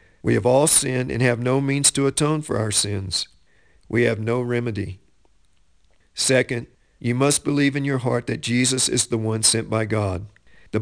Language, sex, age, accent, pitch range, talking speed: English, male, 50-69, American, 110-135 Hz, 185 wpm